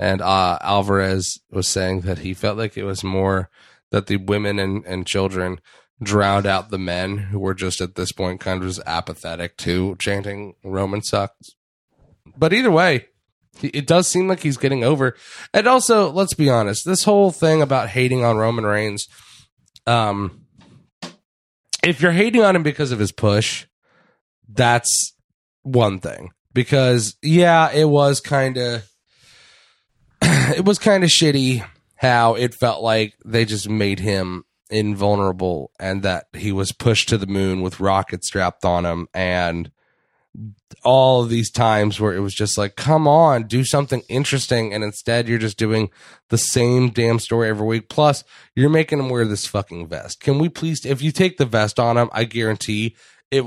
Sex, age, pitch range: male, 20-39, 95-130 Hz